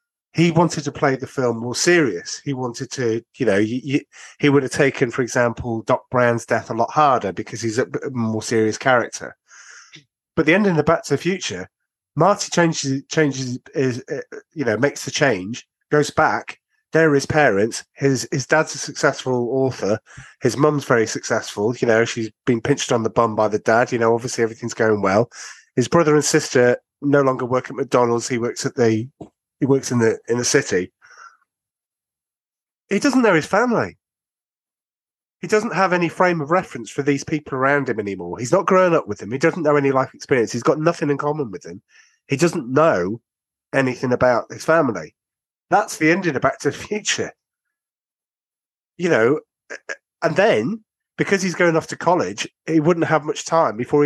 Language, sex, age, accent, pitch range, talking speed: English, male, 30-49, British, 125-165 Hz, 190 wpm